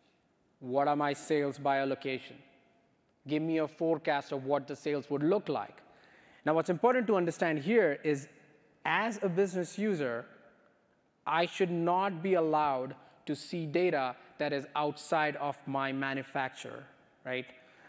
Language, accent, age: English, Indian, 20-39